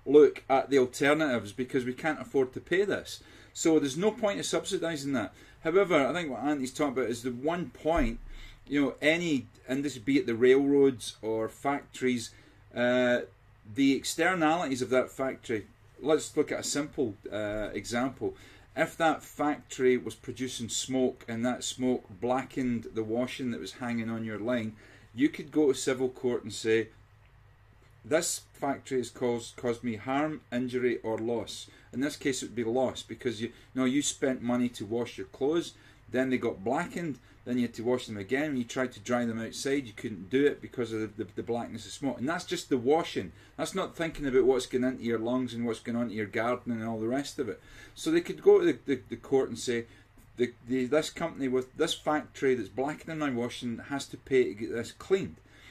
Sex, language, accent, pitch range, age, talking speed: male, English, British, 115-140 Hz, 40-59, 210 wpm